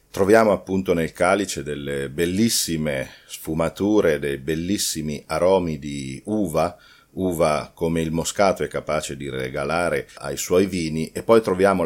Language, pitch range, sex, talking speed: Italian, 75-95 Hz, male, 130 wpm